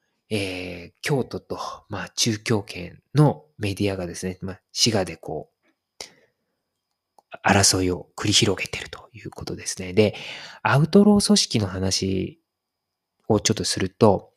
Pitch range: 95-145 Hz